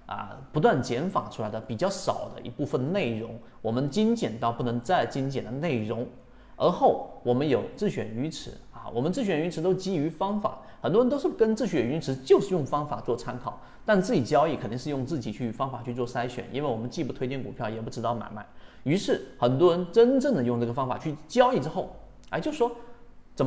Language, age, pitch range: Chinese, 30-49, 120-170 Hz